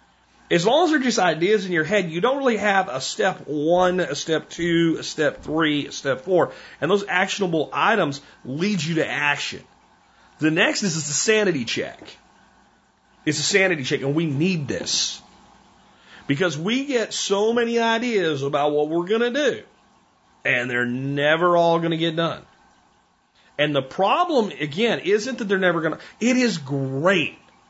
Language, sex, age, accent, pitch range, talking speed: English, male, 40-59, American, 155-220 Hz, 175 wpm